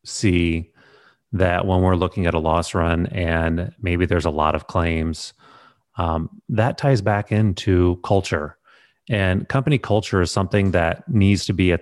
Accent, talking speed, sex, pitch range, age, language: American, 160 wpm, male, 85-105 Hz, 30-49, English